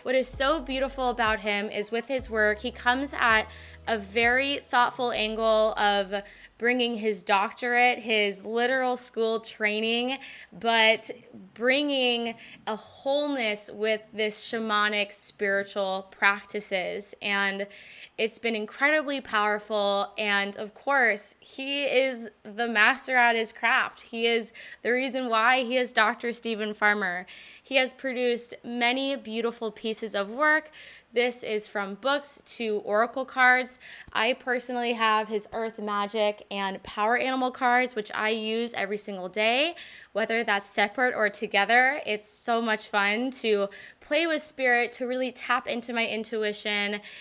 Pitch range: 210-250 Hz